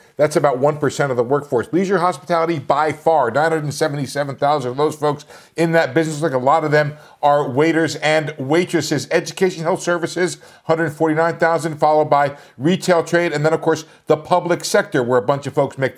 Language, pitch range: English, 150-180 Hz